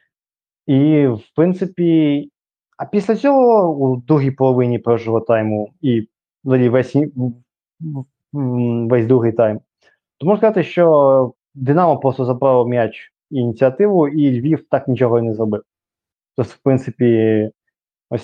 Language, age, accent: Ukrainian, 20-39, native